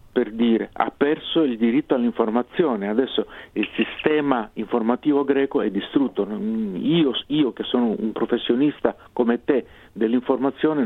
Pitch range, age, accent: 110-145 Hz, 50-69, native